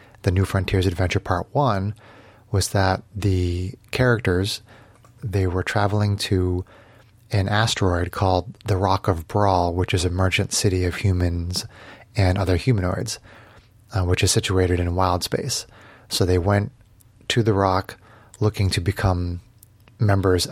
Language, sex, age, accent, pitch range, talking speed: English, male, 30-49, American, 95-110 Hz, 140 wpm